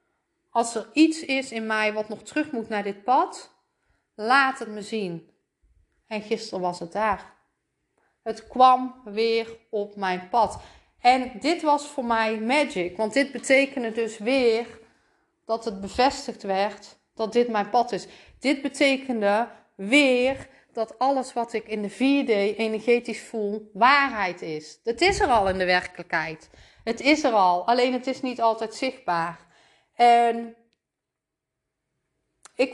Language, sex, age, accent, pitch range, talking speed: Dutch, female, 30-49, Dutch, 195-240 Hz, 150 wpm